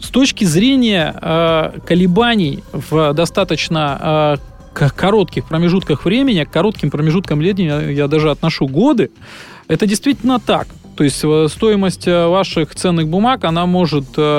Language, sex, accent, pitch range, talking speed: Russian, male, native, 155-200 Hz, 115 wpm